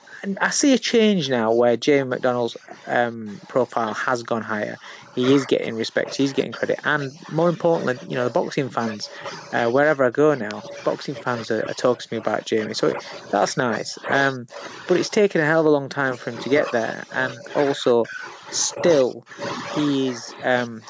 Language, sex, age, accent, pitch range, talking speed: English, male, 20-39, British, 120-145 Hz, 190 wpm